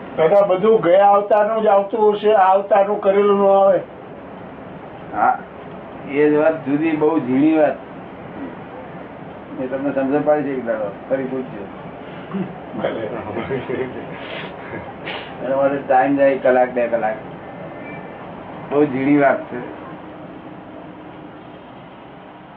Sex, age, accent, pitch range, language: male, 60-79, native, 125-150 Hz, Gujarati